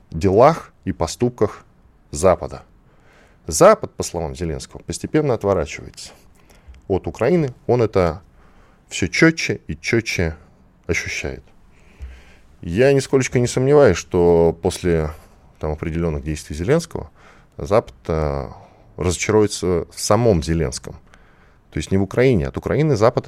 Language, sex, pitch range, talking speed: Russian, male, 80-115 Hz, 110 wpm